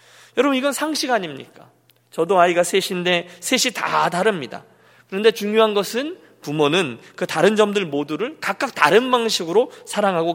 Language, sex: Korean, male